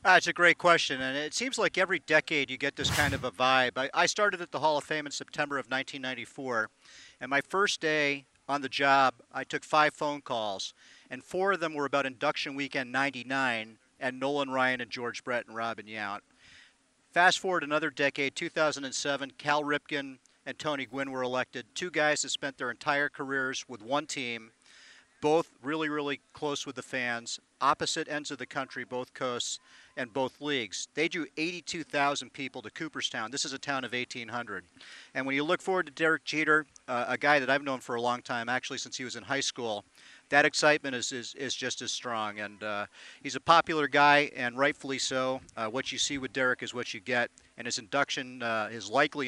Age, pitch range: 40-59, 125-150 Hz